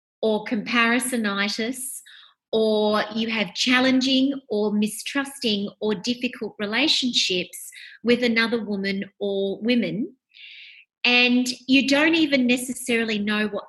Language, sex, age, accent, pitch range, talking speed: English, female, 30-49, Australian, 215-260 Hz, 100 wpm